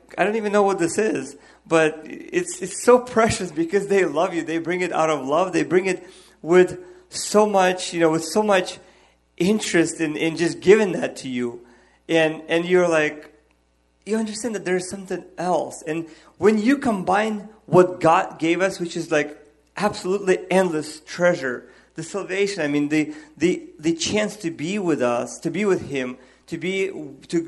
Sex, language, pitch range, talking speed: male, English, 155-190 Hz, 185 wpm